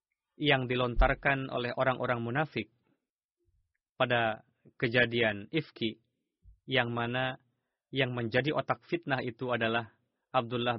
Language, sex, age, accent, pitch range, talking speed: Indonesian, male, 30-49, native, 115-135 Hz, 95 wpm